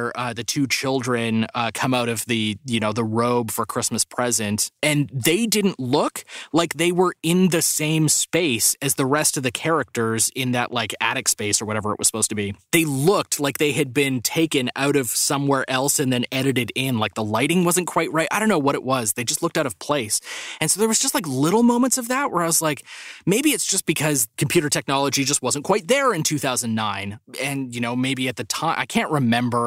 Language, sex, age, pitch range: English, male, 20-39, 120-165 Hz